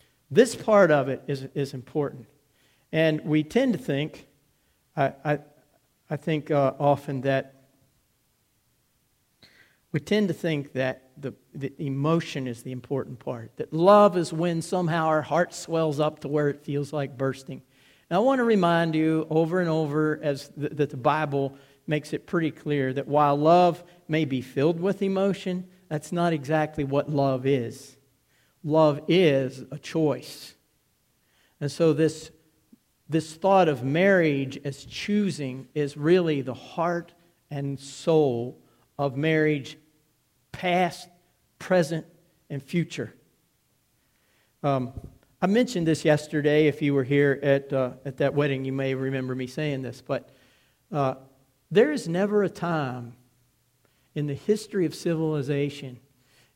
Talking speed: 145 wpm